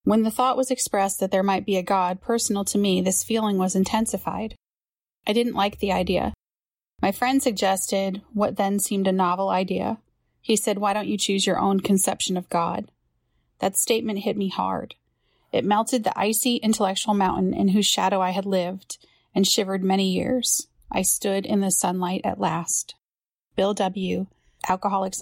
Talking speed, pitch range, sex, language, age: 175 wpm, 180-210 Hz, female, English, 30-49